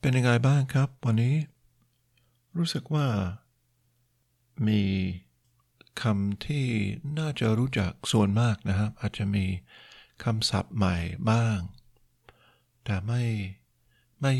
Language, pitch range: Thai, 105-120 Hz